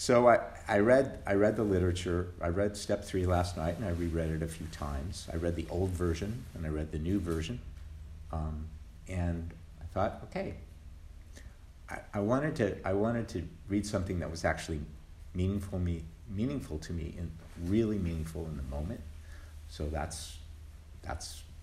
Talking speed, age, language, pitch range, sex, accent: 175 wpm, 50-69, English, 75-95 Hz, male, American